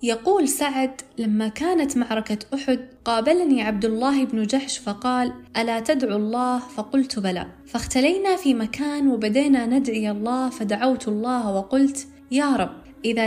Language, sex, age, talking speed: Arabic, female, 10-29, 130 wpm